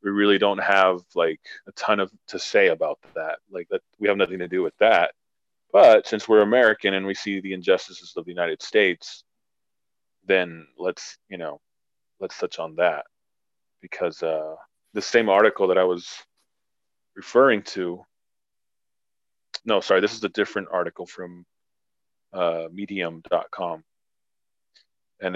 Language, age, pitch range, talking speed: English, 30-49, 90-110 Hz, 150 wpm